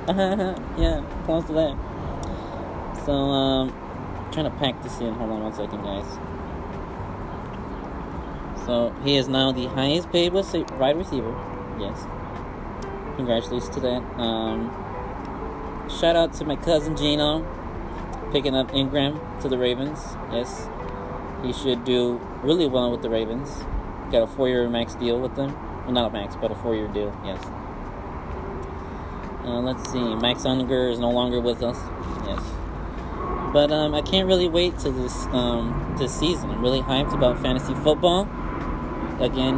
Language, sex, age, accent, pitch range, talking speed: English, male, 20-39, American, 95-135 Hz, 145 wpm